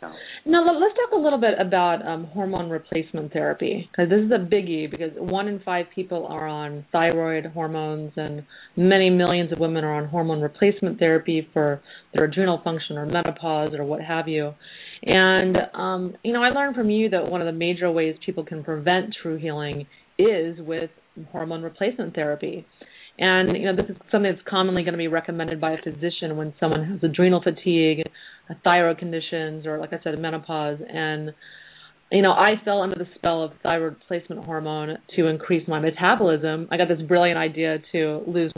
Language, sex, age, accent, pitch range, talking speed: English, female, 30-49, American, 160-185 Hz, 185 wpm